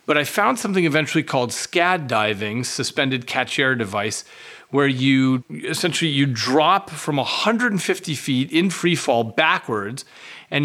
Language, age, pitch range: English, 40-59, 130-165 Hz